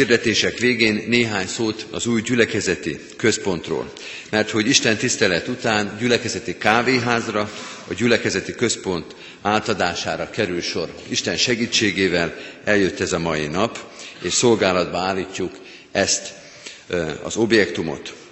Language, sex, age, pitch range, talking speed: Hungarian, male, 50-69, 95-115 Hz, 110 wpm